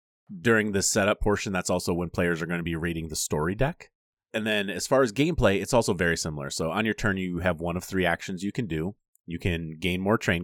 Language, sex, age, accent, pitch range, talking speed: English, male, 30-49, American, 80-100 Hz, 255 wpm